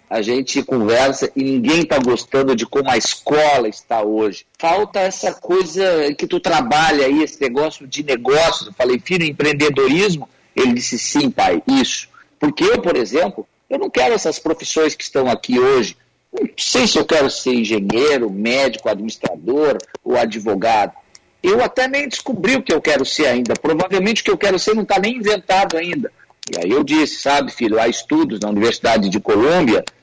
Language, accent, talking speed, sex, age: Portuguese, Brazilian, 180 wpm, male, 50-69